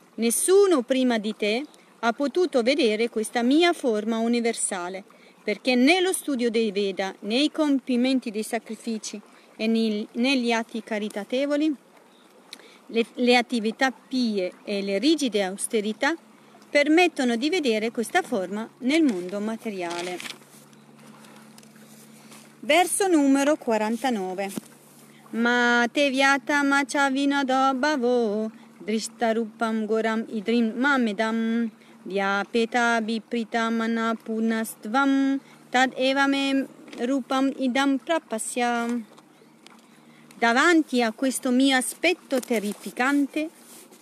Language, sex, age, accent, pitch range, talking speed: Italian, female, 40-59, native, 220-275 Hz, 95 wpm